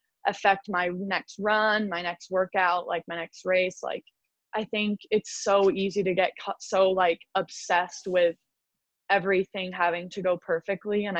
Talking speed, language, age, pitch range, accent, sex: 155 wpm, English, 20-39, 175-195 Hz, American, female